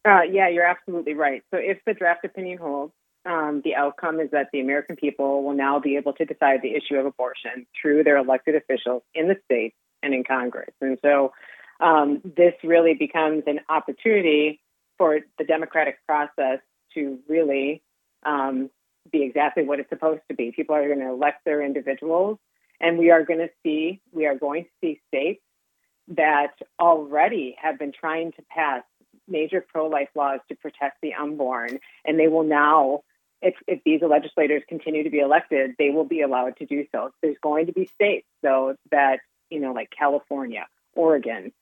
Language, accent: English, American